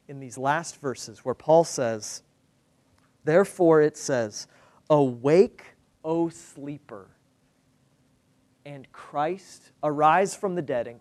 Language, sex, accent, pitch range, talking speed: English, male, American, 130-165 Hz, 110 wpm